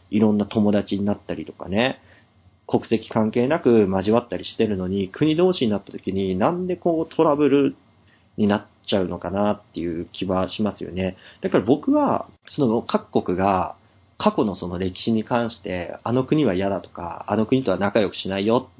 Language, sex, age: Japanese, male, 40-59